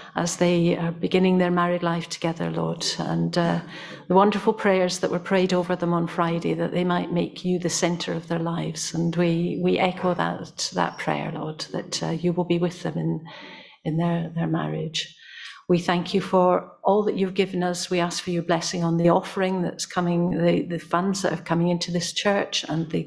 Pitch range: 170-230 Hz